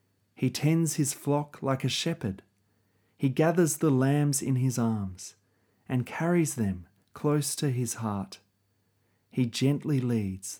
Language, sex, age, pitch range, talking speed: English, male, 30-49, 100-125 Hz, 135 wpm